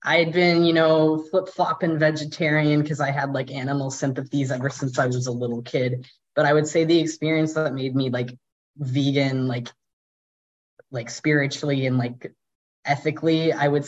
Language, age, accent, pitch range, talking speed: English, 10-29, American, 135-160 Hz, 170 wpm